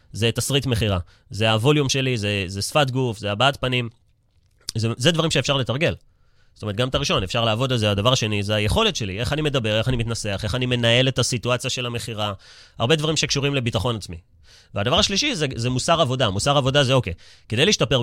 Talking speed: 205 wpm